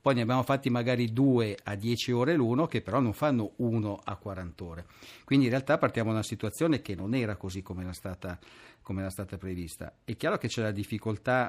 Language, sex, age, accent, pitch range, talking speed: Italian, male, 50-69, native, 100-130 Hz, 210 wpm